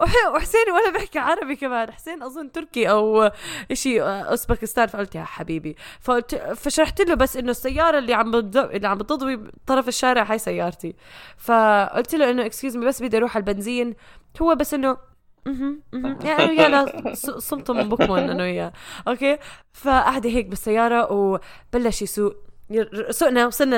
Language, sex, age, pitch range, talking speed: Arabic, female, 10-29, 185-255 Hz, 160 wpm